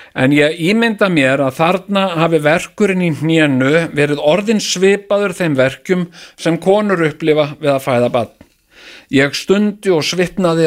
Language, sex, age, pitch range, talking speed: English, male, 50-69, 145-185 Hz, 145 wpm